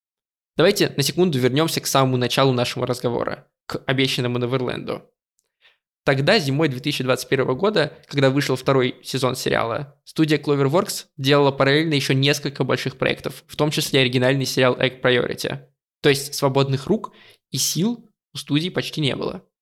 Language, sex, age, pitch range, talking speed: Russian, male, 20-39, 130-150 Hz, 145 wpm